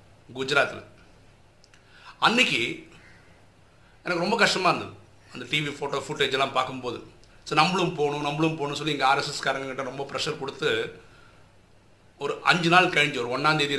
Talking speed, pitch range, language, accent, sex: 125 wpm, 120-155 Hz, Tamil, native, male